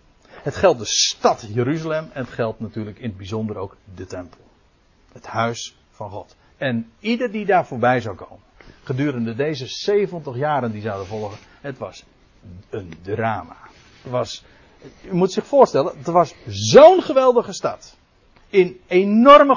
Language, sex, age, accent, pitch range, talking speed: Dutch, male, 60-79, Dutch, 115-175 Hz, 155 wpm